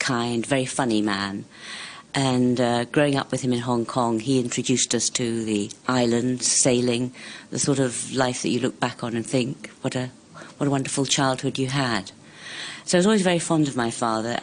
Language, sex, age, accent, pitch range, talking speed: English, female, 50-69, British, 110-140 Hz, 200 wpm